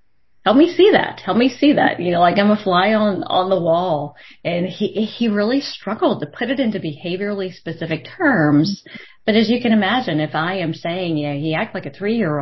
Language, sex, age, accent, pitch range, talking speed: English, female, 30-49, American, 140-190 Hz, 225 wpm